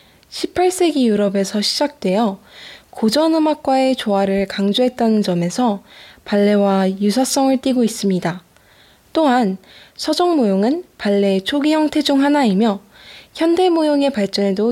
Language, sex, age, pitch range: Korean, female, 10-29, 195-270 Hz